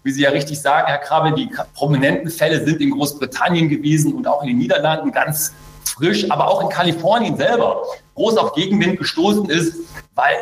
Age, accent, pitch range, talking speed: 40-59, German, 150-190 Hz, 185 wpm